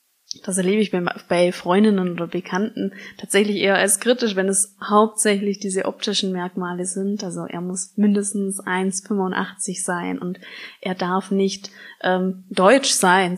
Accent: German